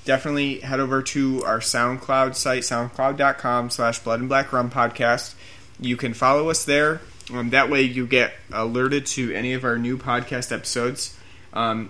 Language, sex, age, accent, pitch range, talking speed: English, male, 30-49, American, 115-135 Hz, 145 wpm